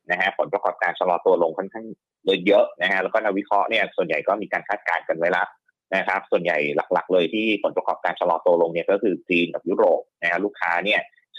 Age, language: 20-39, Thai